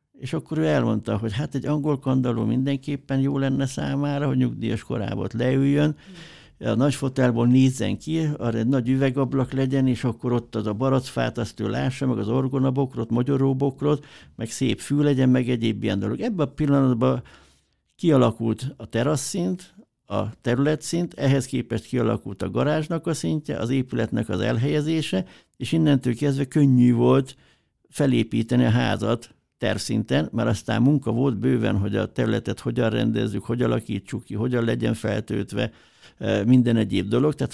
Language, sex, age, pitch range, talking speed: Hungarian, male, 60-79, 115-140 Hz, 150 wpm